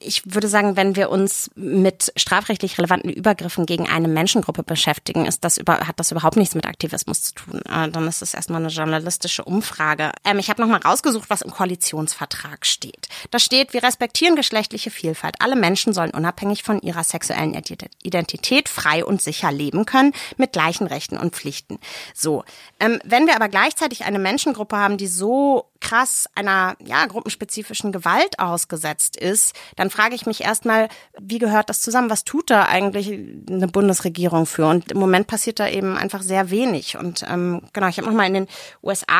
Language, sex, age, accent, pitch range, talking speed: German, female, 30-49, German, 175-215 Hz, 180 wpm